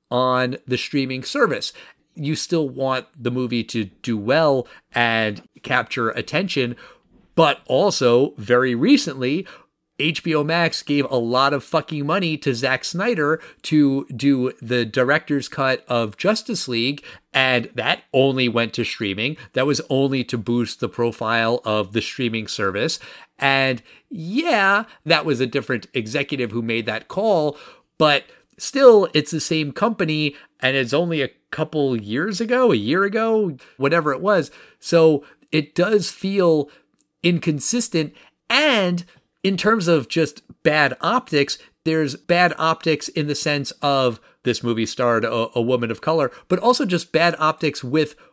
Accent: American